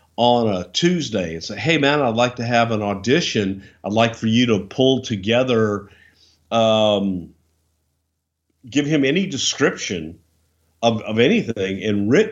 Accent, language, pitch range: American, English, 100-130 Hz